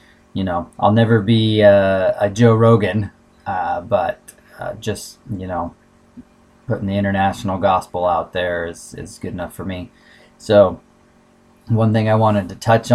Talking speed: 160 wpm